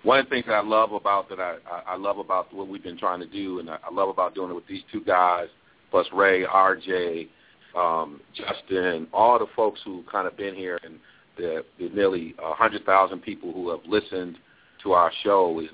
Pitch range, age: 90-110 Hz, 40-59